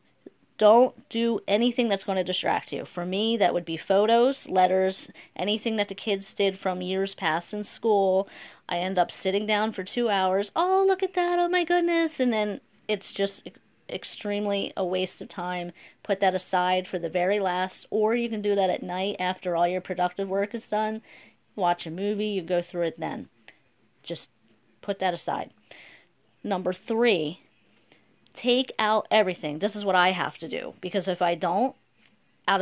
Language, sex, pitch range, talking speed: English, female, 180-215 Hz, 180 wpm